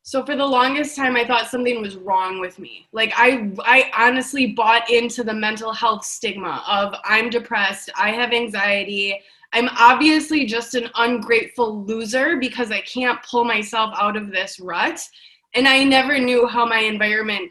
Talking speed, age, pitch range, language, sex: 170 wpm, 20-39, 225-310 Hz, English, female